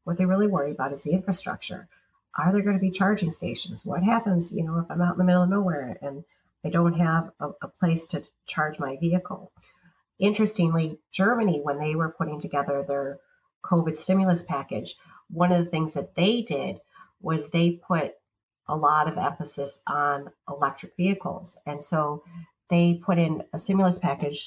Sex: female